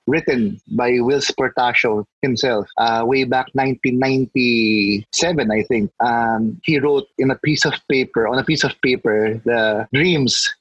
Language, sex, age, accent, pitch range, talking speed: English, male, 20-39, Filipino, 135-155 Hz, 145 wpm